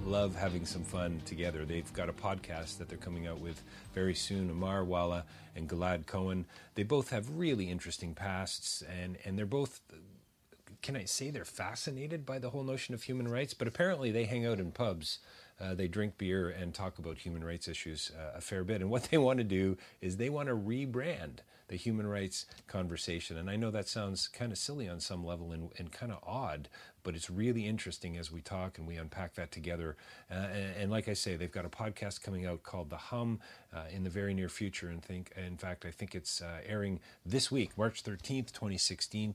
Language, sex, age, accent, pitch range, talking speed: English, male, 40-59, American, 90-110 Hz, 215 wpm